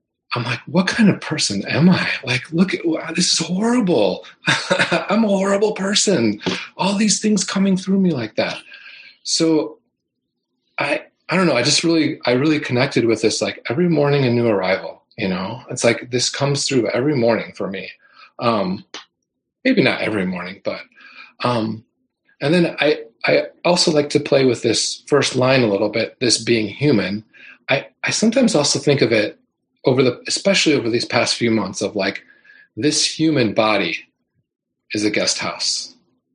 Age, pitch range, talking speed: 30-49, 110-170 Hz, 175 wpm